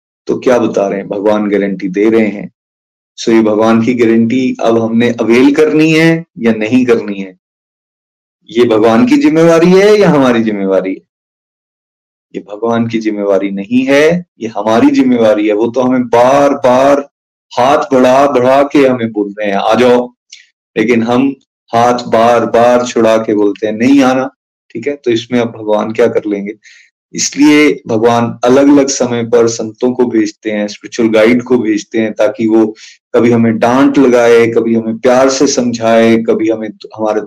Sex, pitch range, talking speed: male, 110-130 Hz, 170 wpm